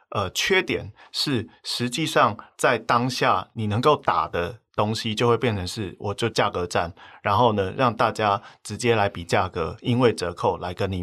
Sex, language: male, Chinese